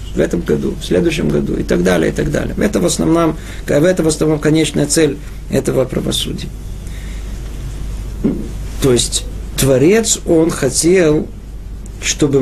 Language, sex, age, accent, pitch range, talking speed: Russian, male, 50-69, native, 145-185 Hz, 135 wpm